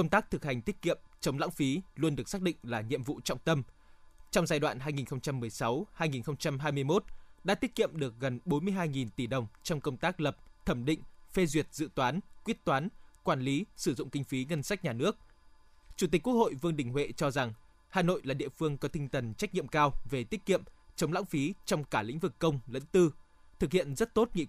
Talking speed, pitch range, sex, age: 220 wpm, 135-180 Hz, male, 20-39